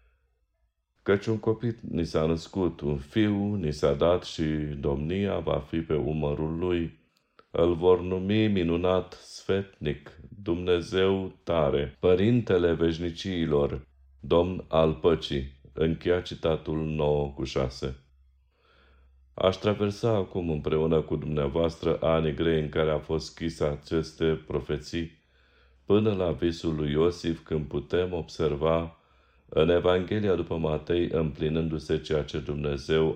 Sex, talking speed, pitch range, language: male, 120 wpm, 75-90 Hz, Romanian